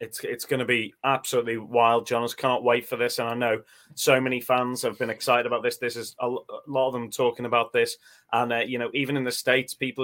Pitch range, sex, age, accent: 115-130 Hz, male, 30-49, British